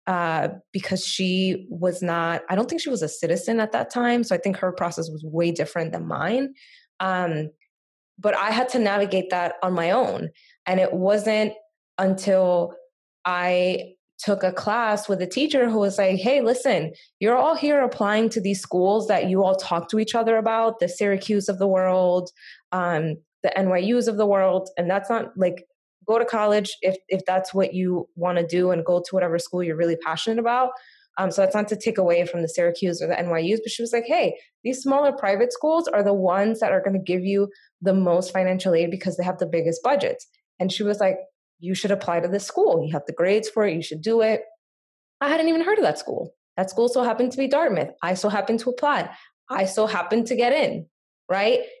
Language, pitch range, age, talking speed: English, 180-230 Hz, 20-39, 220 wpm